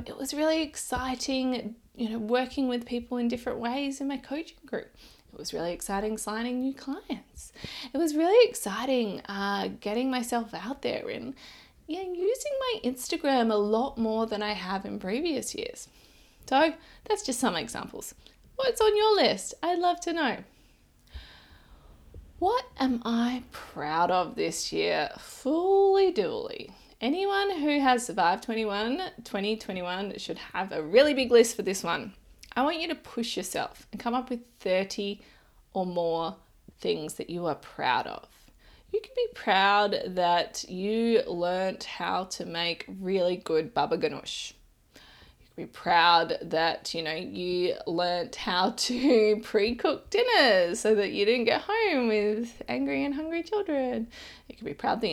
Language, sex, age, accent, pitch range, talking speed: English, female, 20-39, Australian, 195-295 Hz, 160 wpm